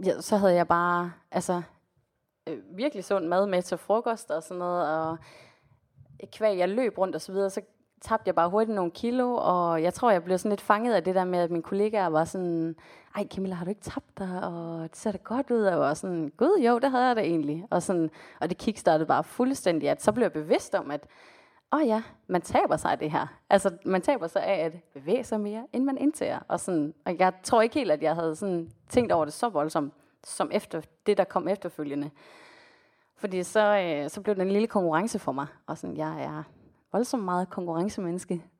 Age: 30-49